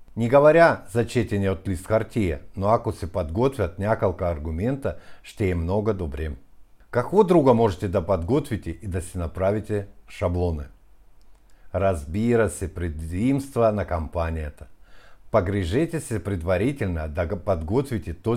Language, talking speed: Bulgarian, 120 wpm